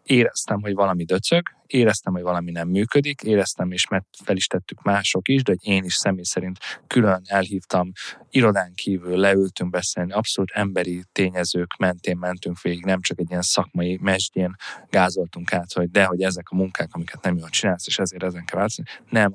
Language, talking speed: Hungarian, 180 wpm